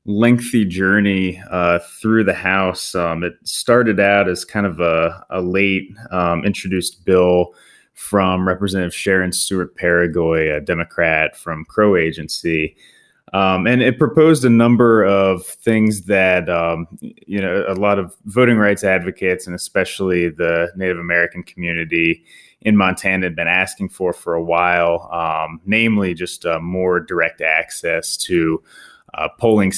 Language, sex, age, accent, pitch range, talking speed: English, male, 20-39, American, 85-95 Hz, 145 wpm